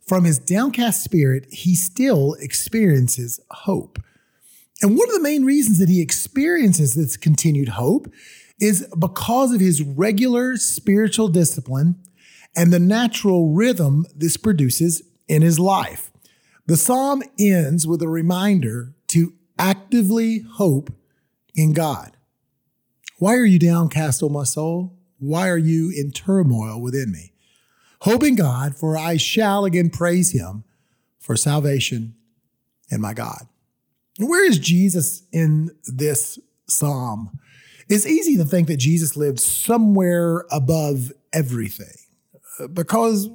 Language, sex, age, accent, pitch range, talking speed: English, male, 30-49, American, 145-200 Hz, 125 wpm